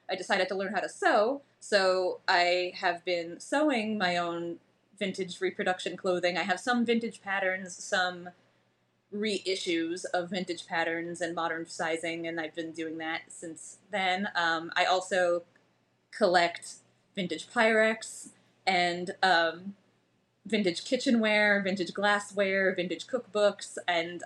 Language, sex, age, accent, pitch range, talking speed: English, female, 20-39, American, 170-200 Hz, 130 wpm